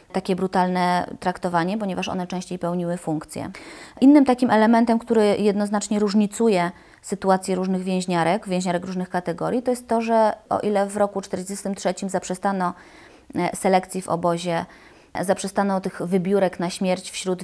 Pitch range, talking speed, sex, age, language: 180-205 Hz, 135 wpm, female, 20-39, Polish